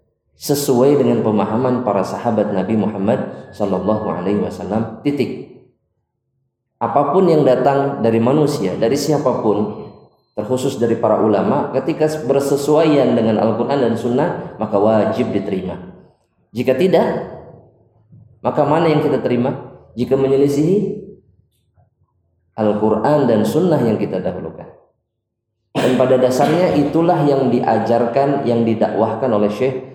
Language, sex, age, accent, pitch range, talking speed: Indonesian, male, 20-39, native, 110-140 Hz, 110 wpm